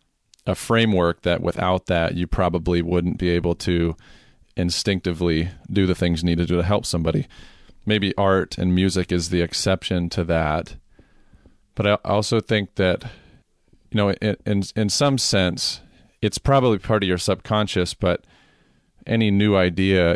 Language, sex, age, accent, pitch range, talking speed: English, male, 40-59, American, 85-100 Hz, 150 wpm